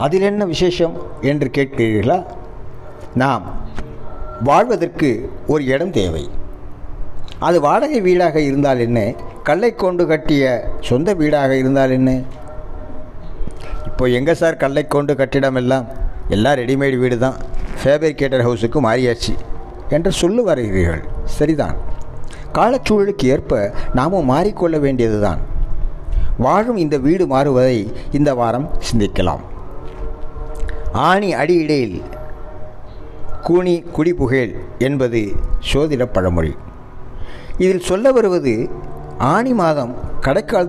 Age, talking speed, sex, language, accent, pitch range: 60-79, 100 wpm, male, Tamil, native, 90-155 Hz